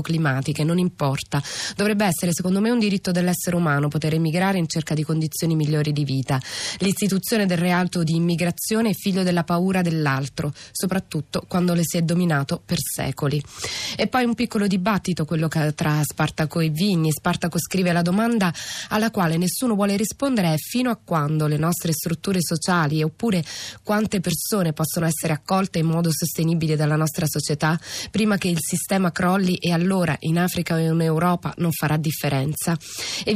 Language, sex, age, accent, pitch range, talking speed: Italian, female, 20-39, native, 160-195 Hz, 170 wpm